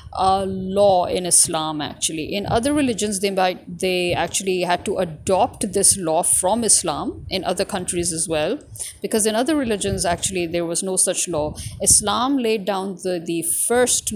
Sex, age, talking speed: female, 50-69, 170 wpm